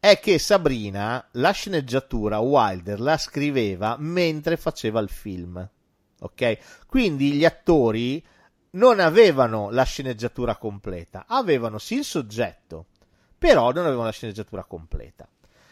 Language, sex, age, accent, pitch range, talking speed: Italian, male, 40-59, native, 110-155 Hz, 120 wpm